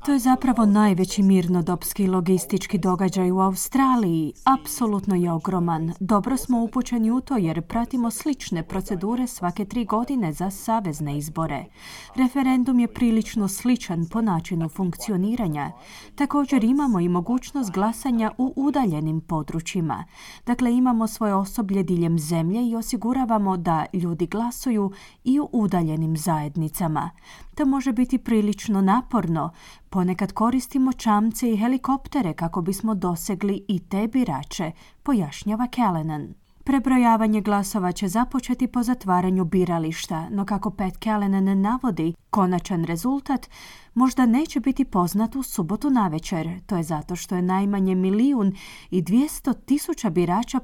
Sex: female